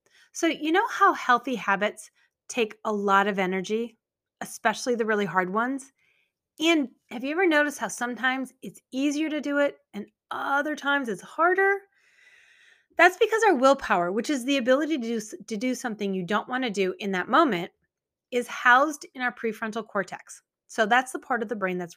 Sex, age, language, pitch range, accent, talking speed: female, 30-49, English, 200-275 Hz, American, 185 wpm